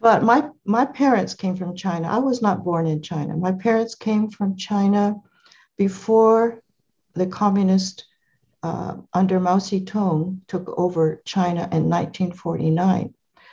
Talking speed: 135 wpm